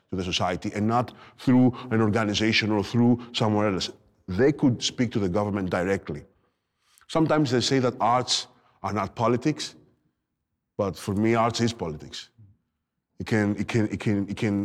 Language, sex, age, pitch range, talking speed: Greek, male, 30-49, 100-130 Hz, 170 wpm